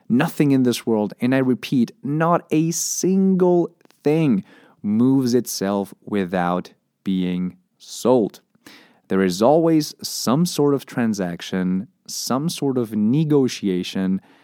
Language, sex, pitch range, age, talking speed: English, male, 105-170 Hz, 30-49, 110 wpm